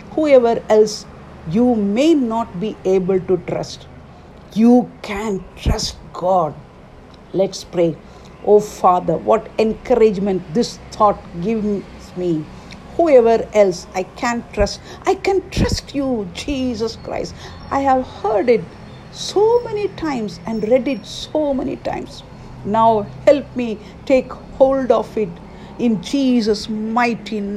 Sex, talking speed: female, 125 wpm